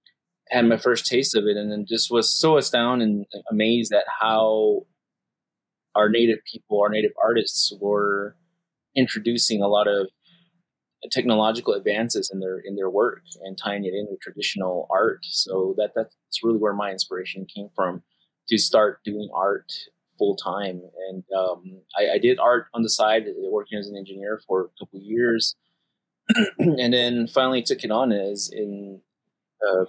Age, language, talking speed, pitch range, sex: 20-39, English, 165 wpm, 95-120 Hz, male